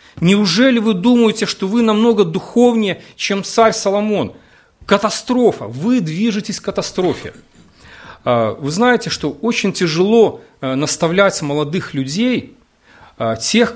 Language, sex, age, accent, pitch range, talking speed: Russian, male, 40-59, native, 145-215 Hz, 105 wpm